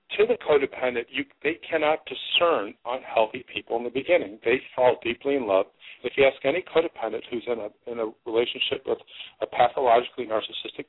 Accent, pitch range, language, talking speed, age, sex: American, 120-185 Hz, English, 175 wpm, 50-69, male